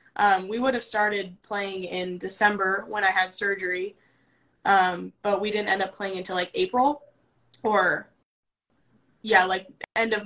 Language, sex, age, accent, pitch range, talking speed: English, female, 10-29, American, 190-225 Hz, 160 wpm